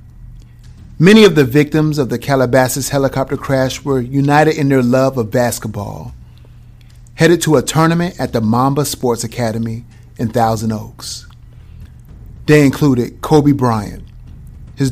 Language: English